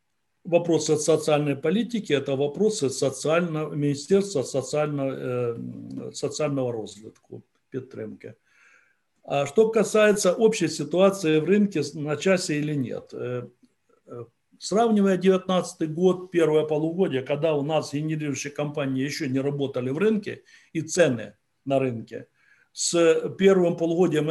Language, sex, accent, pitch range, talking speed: Ukrainian, male, native, 145-185 Hz, 115 wpm